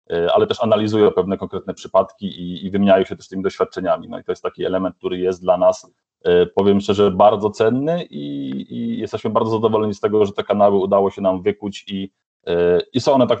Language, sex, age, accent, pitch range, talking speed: Polish, male, 30-49, native, 90-110 Hz, 205 wpm